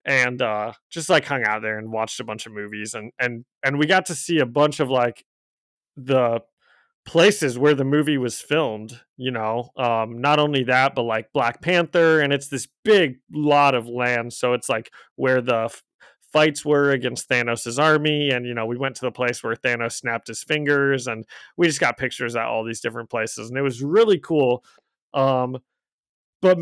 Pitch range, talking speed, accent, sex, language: 130-185 Hz, 200 wpm, American, male, English